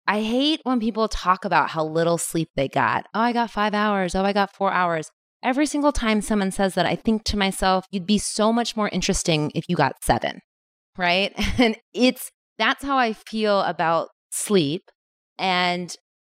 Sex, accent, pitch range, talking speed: female, American, 160-220 Hz, 190 wpm